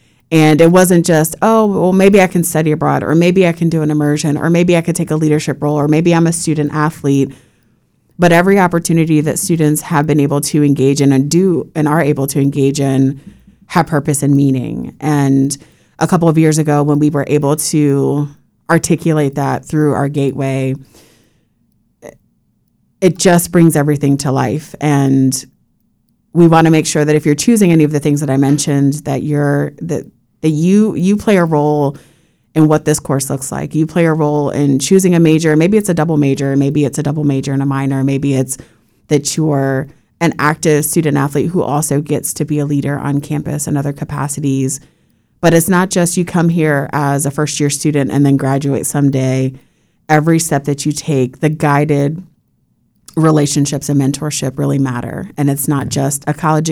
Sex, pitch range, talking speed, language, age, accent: female, 140-160 Hz, 195 wpm, English, 30-49, American